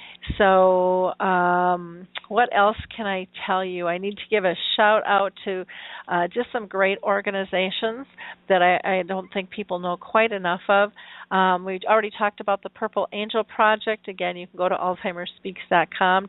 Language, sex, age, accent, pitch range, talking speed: English, female, 40-59, American, 180-205 Hz, 165 wpm